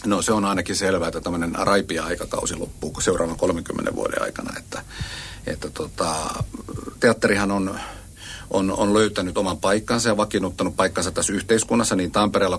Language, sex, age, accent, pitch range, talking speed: Finnish, male, 50-69, native, 90-110 Hz, 145 wpm